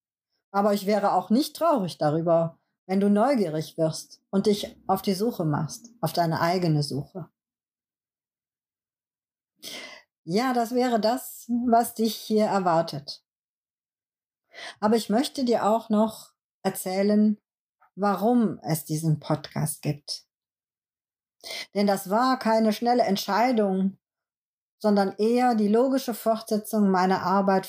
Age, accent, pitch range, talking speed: 50-69, German, 185-225 Hz, 115 wpm